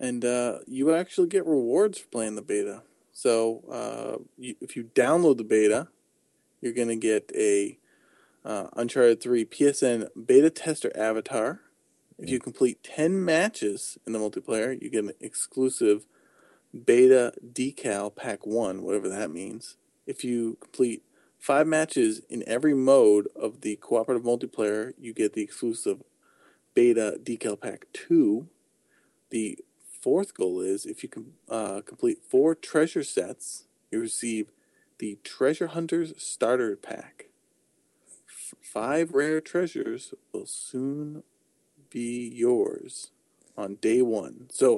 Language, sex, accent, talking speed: English, male, American, 130 wpm